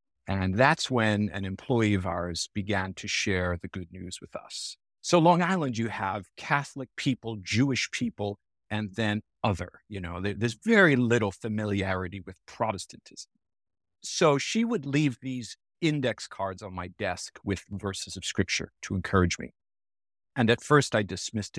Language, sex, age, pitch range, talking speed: English, male, 50-69, 95-120 Hz, 160 wpm